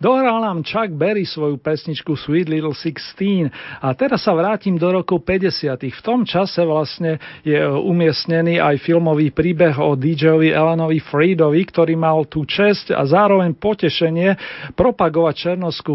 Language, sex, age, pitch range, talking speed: Slovak, male, 40-59, 145-170 Hz, 145 wpm